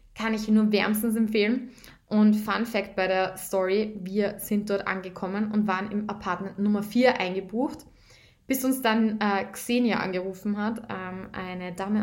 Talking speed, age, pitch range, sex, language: 165 wpm, 20-39, 185-220 Hz, female, German